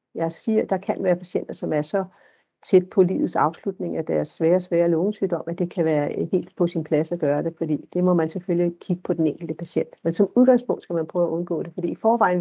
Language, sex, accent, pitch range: Danish, female, native, 170-205 Hz